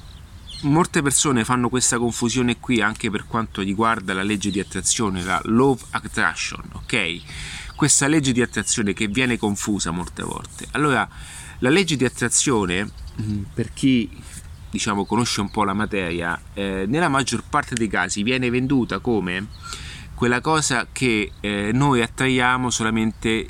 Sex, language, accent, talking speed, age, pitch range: male, Italian, native, 145 wpm, 30-49, 100-130 Hz